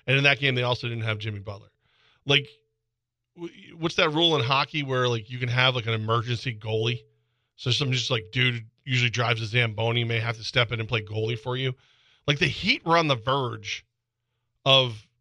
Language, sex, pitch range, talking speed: English, male, 115-145 Hz, 205 wpm